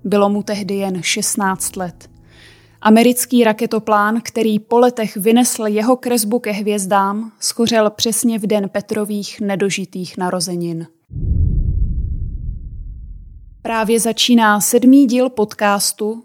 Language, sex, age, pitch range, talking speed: Czech, female, 20-39, 200-235 Hz, 105 wpm